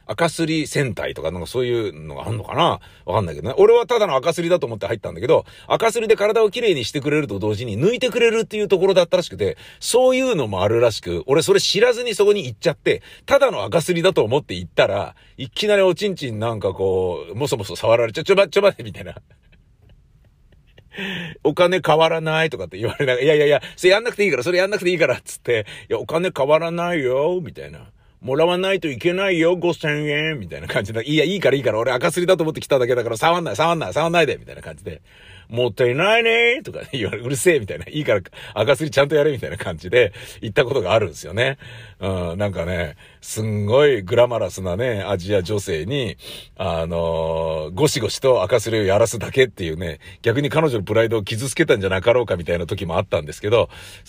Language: Japanese